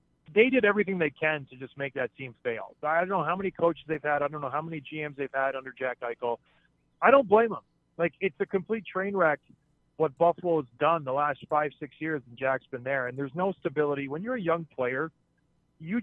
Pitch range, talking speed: 140-180 Hz, 235 wpm